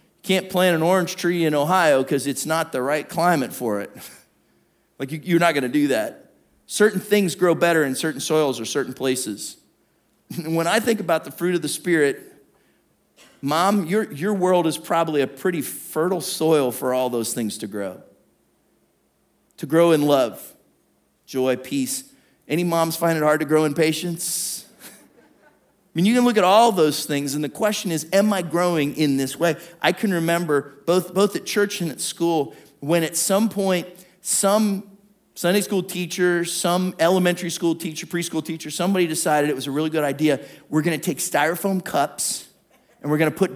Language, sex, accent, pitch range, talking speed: English, male, American, 150-190 Hz, 185 wpm